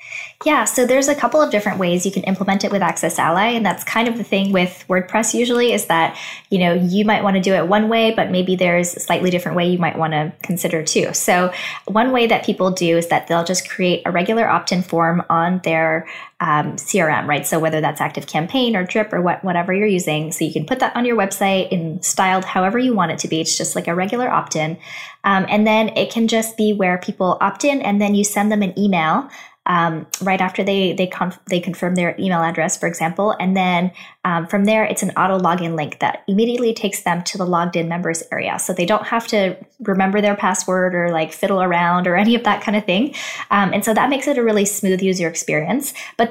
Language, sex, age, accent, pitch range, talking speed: English, female, 10-29, American, 175-215 Hz, 235 wpm